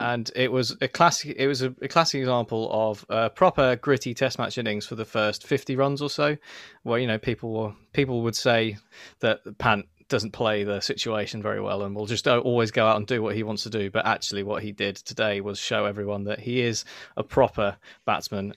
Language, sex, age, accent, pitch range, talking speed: English, male, 20-39, British, 110-130 Hz, 225 wpm